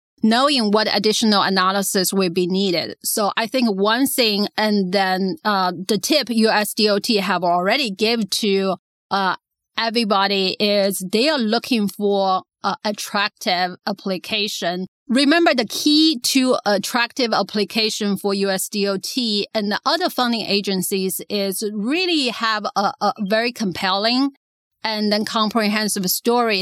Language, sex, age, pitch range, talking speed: English, female, 30-49, 195-235 Hz, 125 wpm